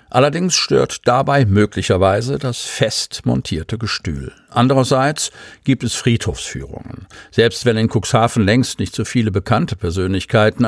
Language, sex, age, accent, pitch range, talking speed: German, male, 50-69, German, 100-125 Hz, 125 wpm